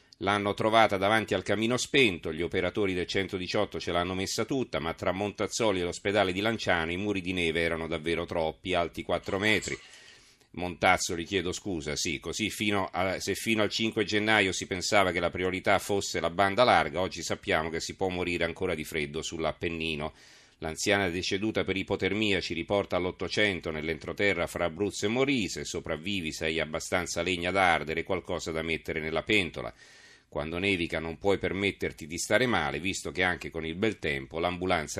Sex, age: male, 40-59